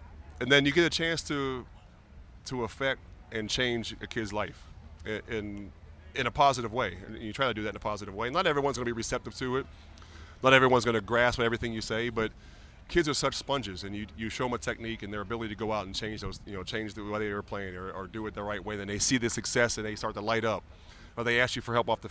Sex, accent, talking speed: male, American, 270 wpm